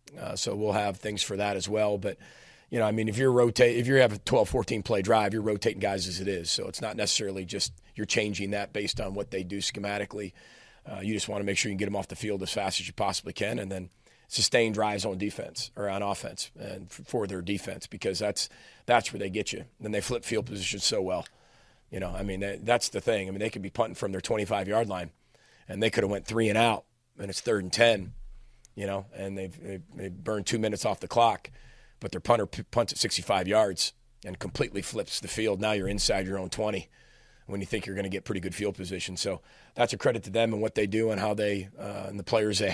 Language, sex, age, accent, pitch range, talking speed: English, male, 40-59, American, 100-115 Hz, 255 wpm